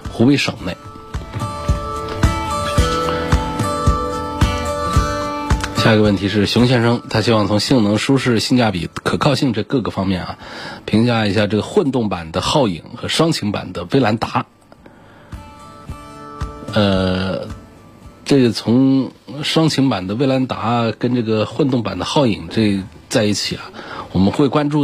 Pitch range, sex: 95-120 Hz, male